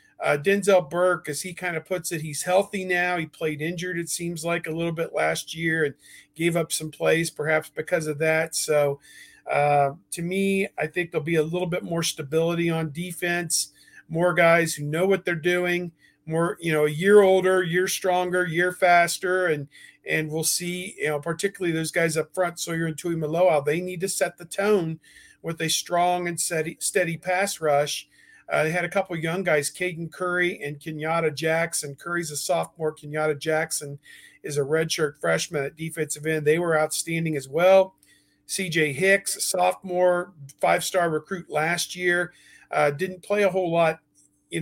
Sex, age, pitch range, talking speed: male, 50-69, 155-180 Hz, 185 wpm